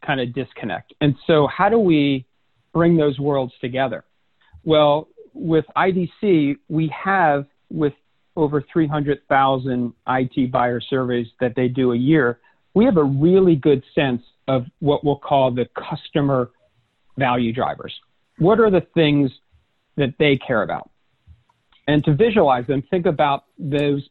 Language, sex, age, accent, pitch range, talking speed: English, male, 50-69, American, 130-160 Hz, 140 wpm